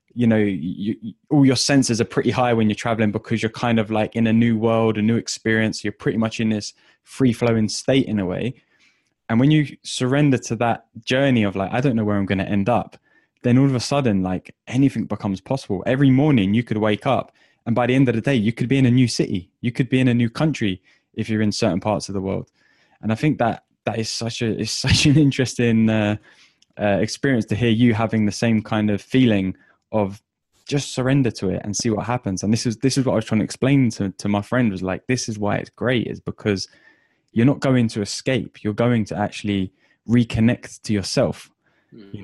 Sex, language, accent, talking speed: male, English, British, 235 wpm